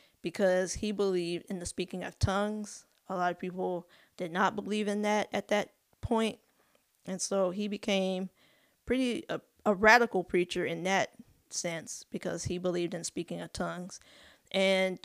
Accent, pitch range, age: American, 180-205 Hz, 20-39